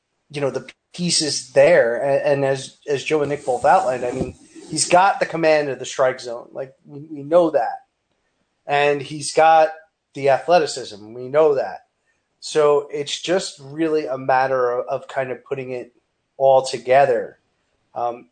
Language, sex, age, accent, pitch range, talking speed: English, male, 30-49, American, 130-155 Hz, 160 wpm